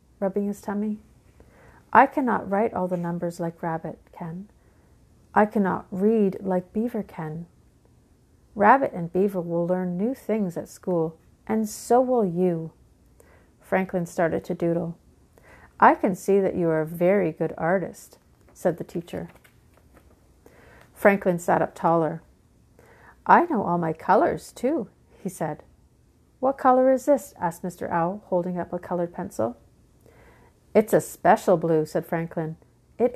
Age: 40-59